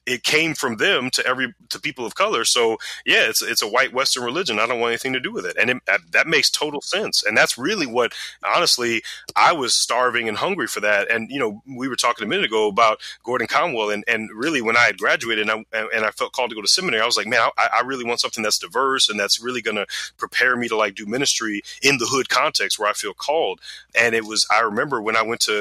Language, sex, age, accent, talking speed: English, male, 30-49, American, 265 wpm